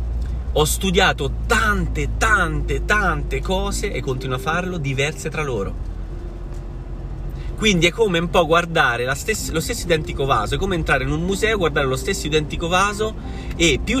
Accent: native